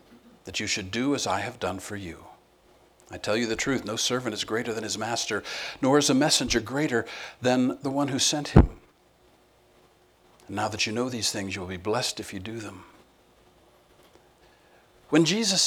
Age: 50-69